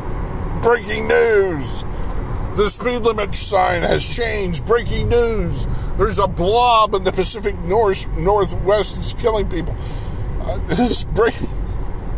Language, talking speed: English, 125 wpm